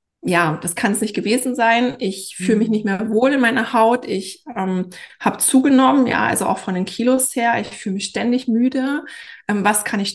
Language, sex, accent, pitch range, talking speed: German, female, German, 190-245 Hz, 215 wpm